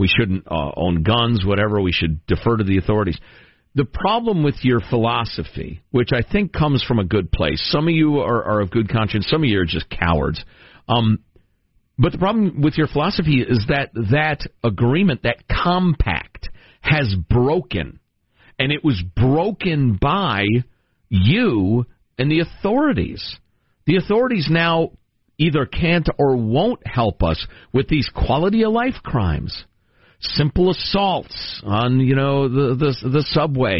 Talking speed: 155 wpm